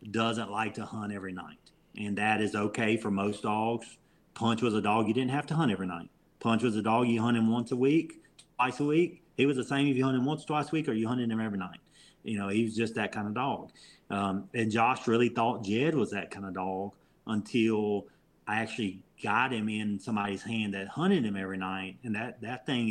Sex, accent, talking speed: male, American, 240 wpm